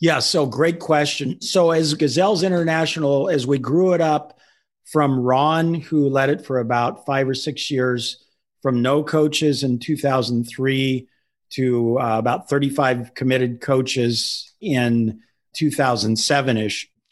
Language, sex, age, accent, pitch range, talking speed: English, male, 50-69, American, 125-160 Hz, 130 wpm